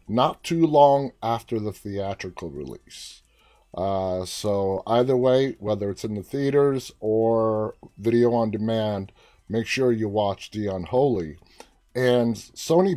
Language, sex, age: English, male, 30-49